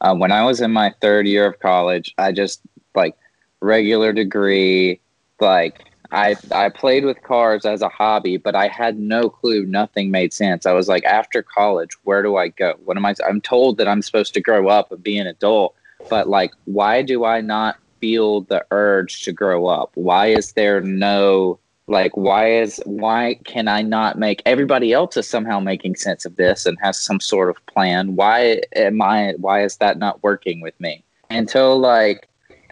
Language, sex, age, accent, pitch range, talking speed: English, male, 20-39, American, 95-110 Hz, 195 wpm